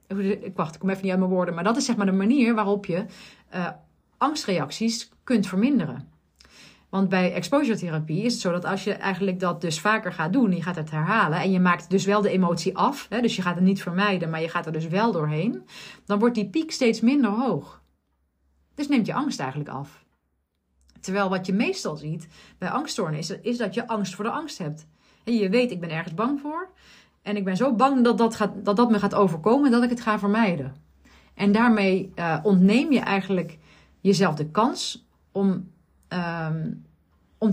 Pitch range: 175-220 Hz